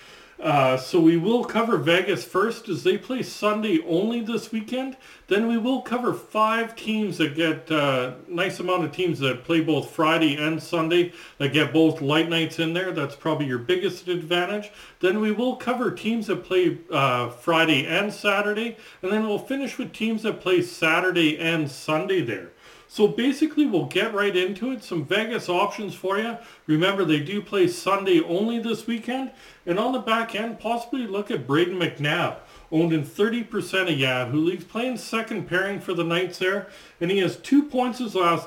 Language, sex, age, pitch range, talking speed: English, male, 40-59, 170-225 Hz, 185 wpm